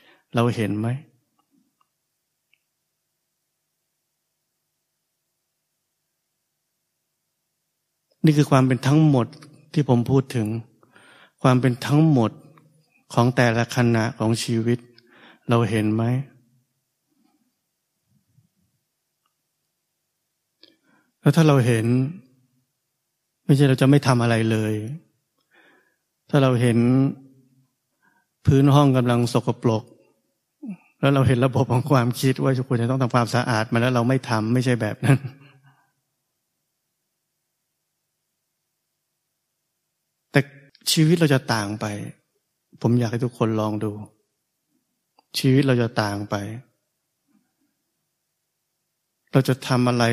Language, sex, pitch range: Thai, male, 115-140 Hz